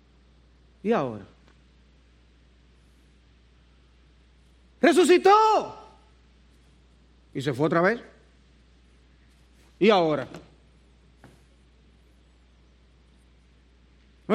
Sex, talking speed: male, 45 wpm